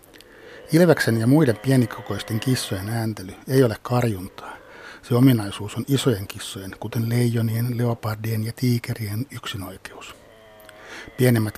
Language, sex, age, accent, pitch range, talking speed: Finnish, male, 60-79, native, 105-120 Hz, 110 wpm